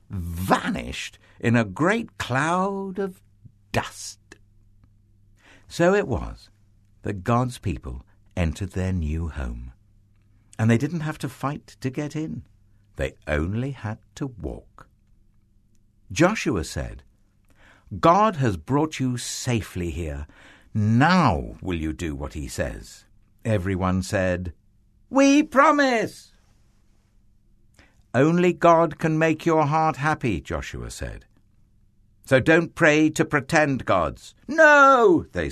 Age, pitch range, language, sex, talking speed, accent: 60-79, 95-130 Hz, English, male, 115 wpm, British